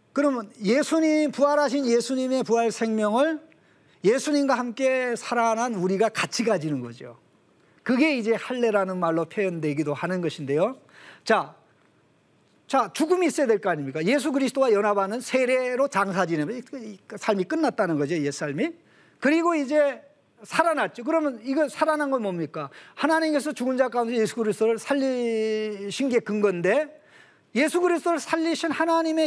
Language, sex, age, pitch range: Korean, male, 40-59, 210-295 Hz